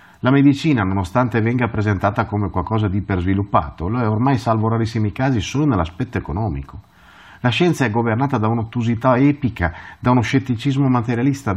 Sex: male